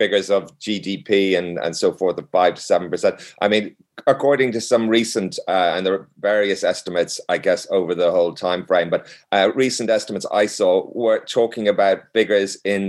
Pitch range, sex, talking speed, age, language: 95-130 Hz, male, 190 wpm, 30-49, English